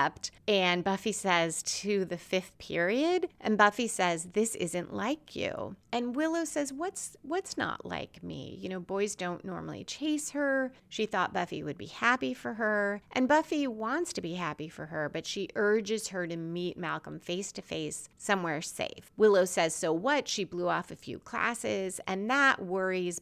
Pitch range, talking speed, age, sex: 170-225 Hz, 180 wpm, 30-49, female